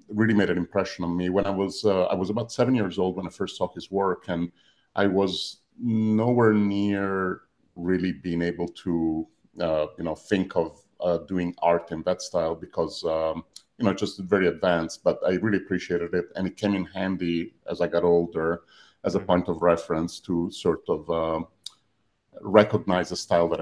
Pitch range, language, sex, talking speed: 85-100 Hz, English, male, 195 wpm